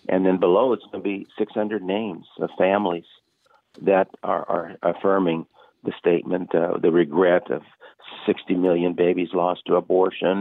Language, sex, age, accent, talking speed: English, male, 60-79, American, 155 wpm